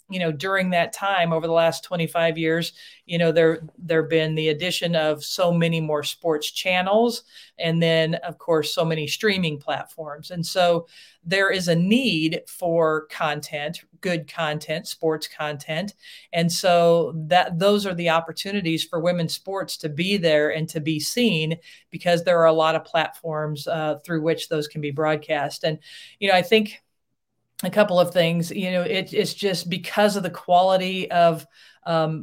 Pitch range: 160-180 Hz